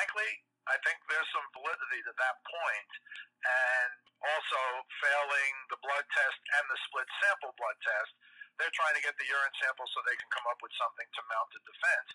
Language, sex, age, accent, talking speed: English, male, 50-69, American, 190 wpm